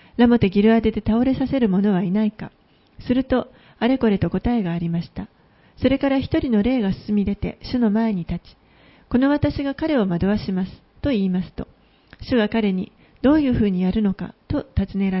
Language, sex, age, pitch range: Japanese, female, 40-59, 195-245 Hz